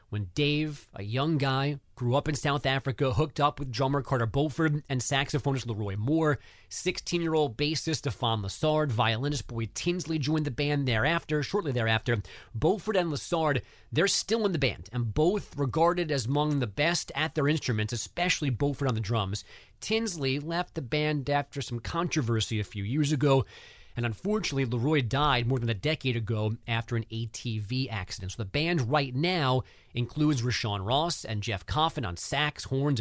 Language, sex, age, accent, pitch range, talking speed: English, male, 30-49, American, 120-155 Hz, 170 wpm